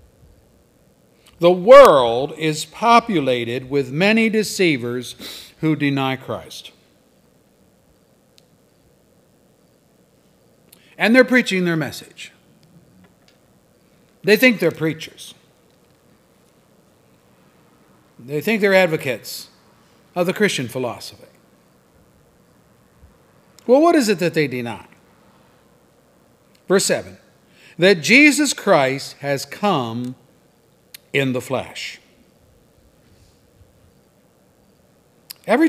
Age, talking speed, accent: 60-79, 75 wpm, American